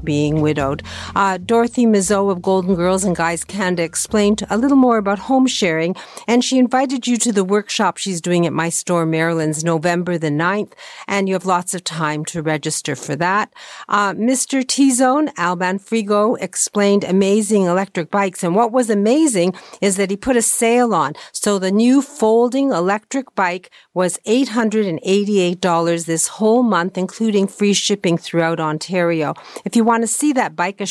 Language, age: English, 50-69